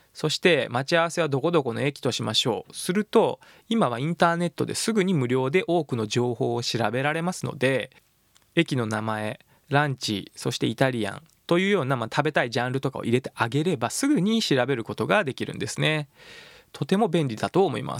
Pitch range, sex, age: 125-170 Hz, male, 20-39